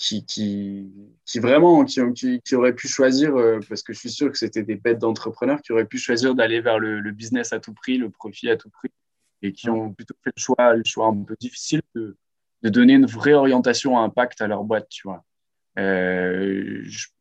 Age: 20-39